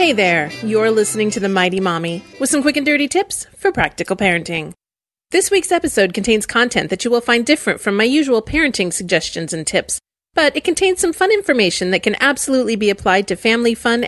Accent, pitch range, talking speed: American, 195-265 Hz, 205 wpm